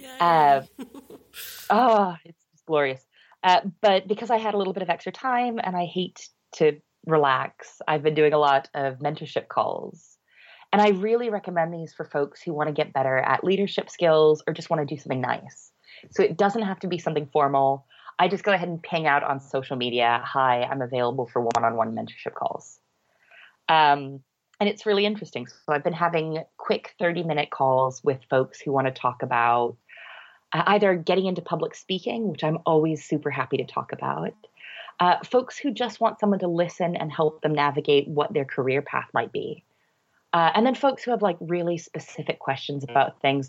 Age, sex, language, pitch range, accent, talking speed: 30-49, female, English, 140-190 Hz, American, 190 wpm